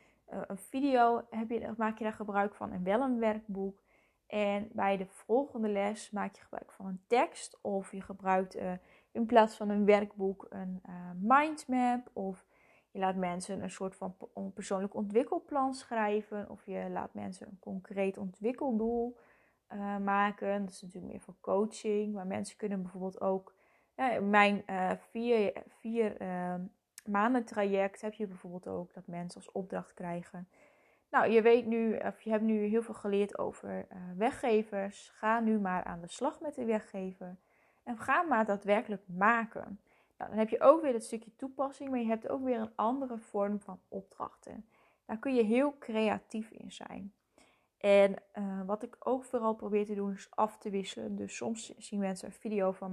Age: 20-39